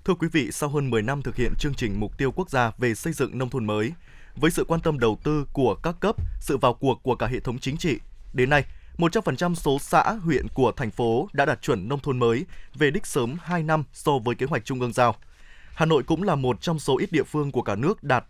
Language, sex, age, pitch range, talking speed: Vietnamese, male, 20-39, 120-165 Hz, 260 wpm